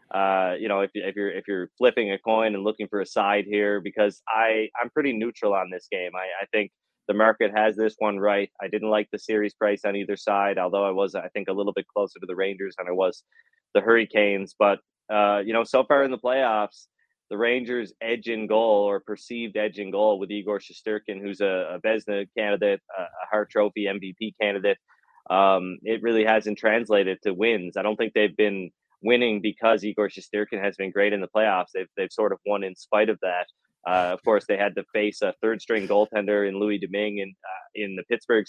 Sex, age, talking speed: male, 20-39, 215 wpm